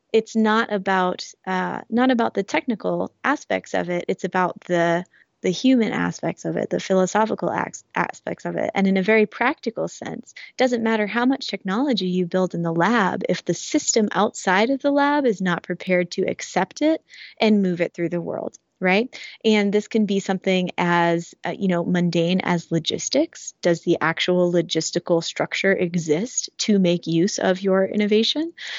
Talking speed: 175 wpm